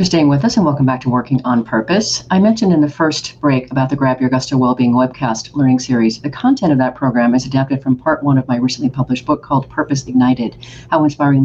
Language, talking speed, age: English, 240 wpm, 40-59